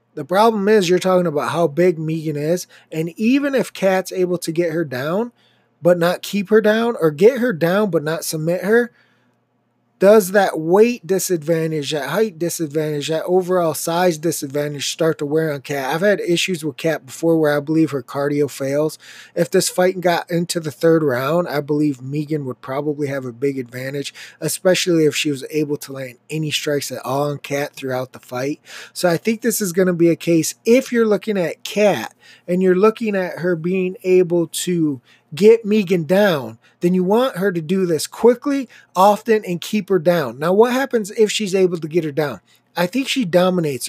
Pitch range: 155-205 Hz